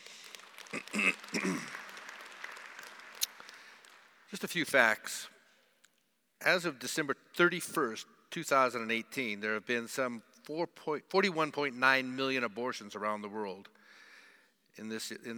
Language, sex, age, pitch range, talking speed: English, male, 60-79, 120-170 Hz, 110 wpm